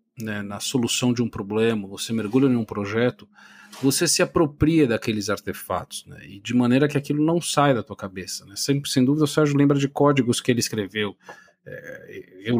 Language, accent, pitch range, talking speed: Portuguese, Brazilian, 115-155 Hz, 185 wpm